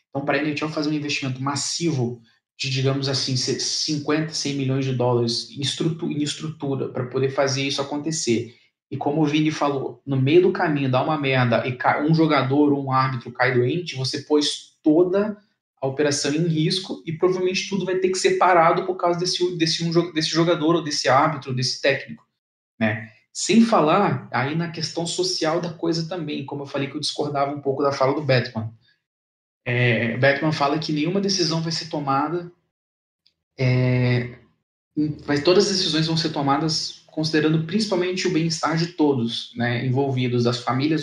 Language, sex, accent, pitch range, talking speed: Portuguese, male, Brazilian, 130-160 Hz, 175 wpm